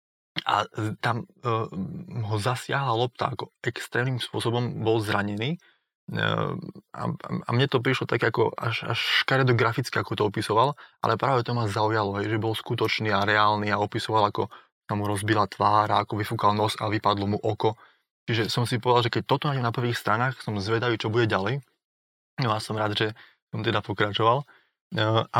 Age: 20-39